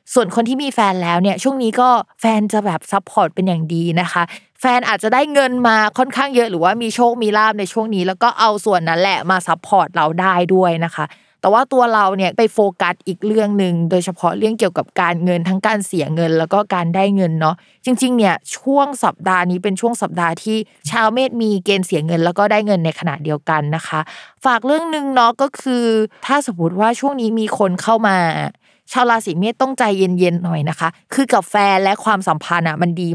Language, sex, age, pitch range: Thai, female, 20-39, 175-225 Hz